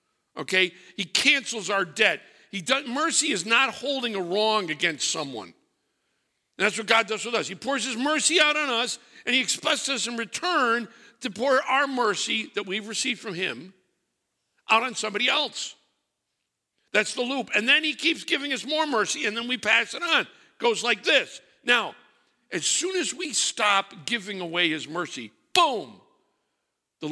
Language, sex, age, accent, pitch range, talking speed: English, male, 60-79, American, 205-270 Hz, 180 wpm